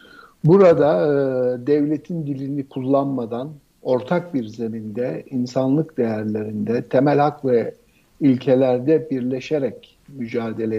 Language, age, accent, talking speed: Turkish, 60-79, native, 90 wpm